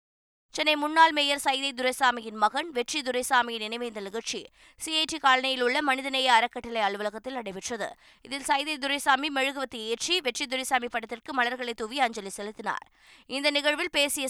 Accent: native